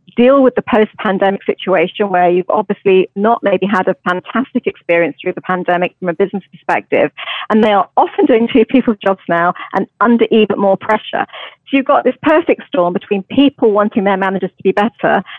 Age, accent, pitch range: 40-59, British, 185-245 Hz